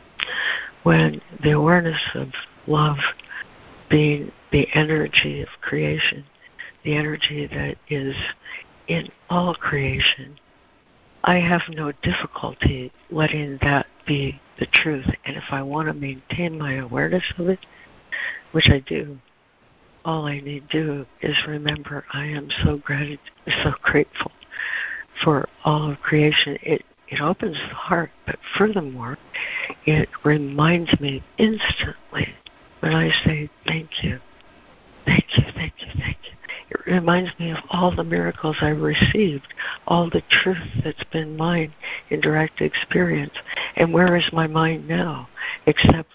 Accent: American